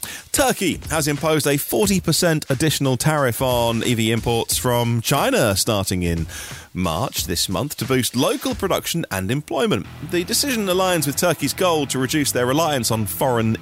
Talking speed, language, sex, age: 155 wpm, English, male, 30-49